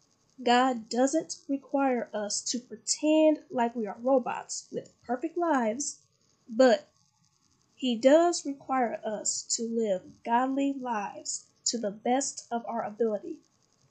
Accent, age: American, 10-29